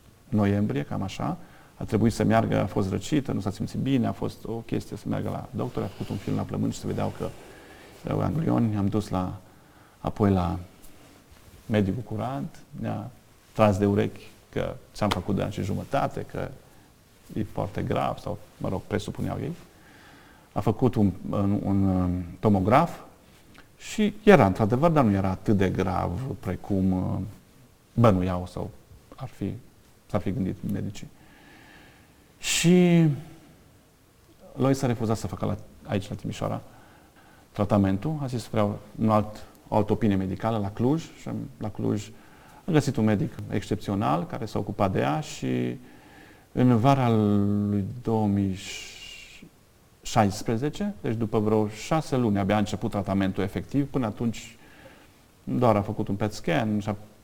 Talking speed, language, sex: 150 wpm, Romanian, male